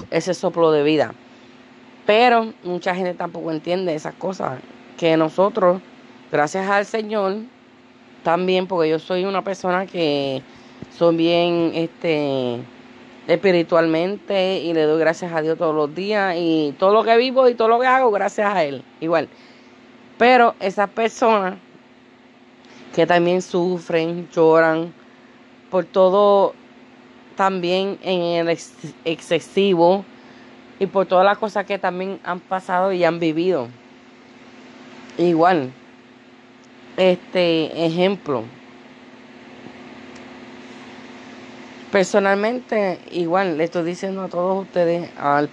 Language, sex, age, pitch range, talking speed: English, female, 30-49, 125-190 Hz, 115 wpm